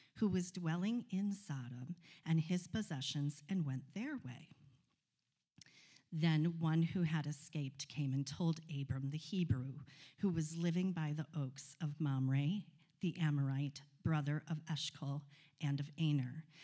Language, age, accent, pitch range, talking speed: English, 50-69, American, 145-175 Hz, 140 wpm